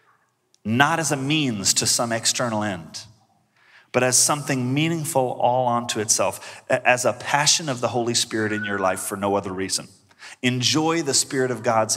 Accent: American